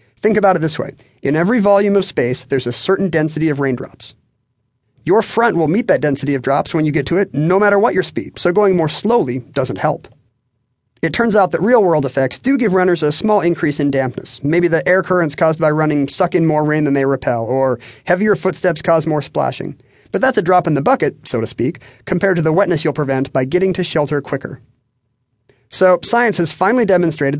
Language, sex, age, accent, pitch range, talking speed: English, male, 30-49, American, 130-180 Hz, 220 wpm